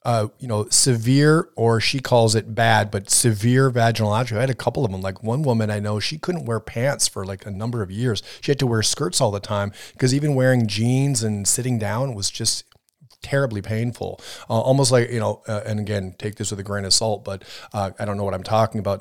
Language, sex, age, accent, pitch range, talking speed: English, male, 30-49, American, 105-130 Hz, 245 wpm